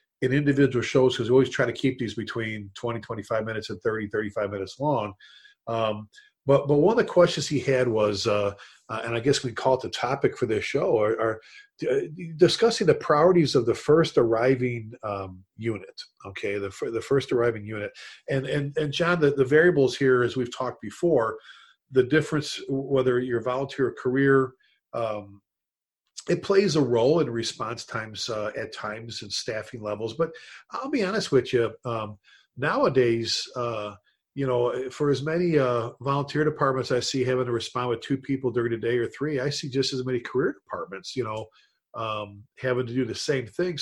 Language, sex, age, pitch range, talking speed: English, male, 40-59, 115-145 Hz, 190 wpm